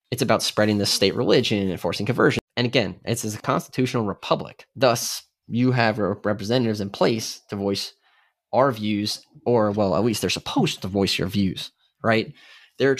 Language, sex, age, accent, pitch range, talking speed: English, male, 20-39, American, 105-125 Hz, 170 wpm